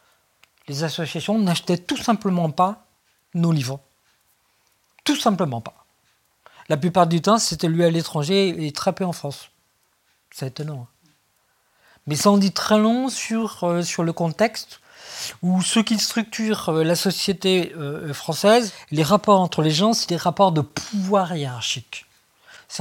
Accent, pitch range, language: French, 150-195 Hz, French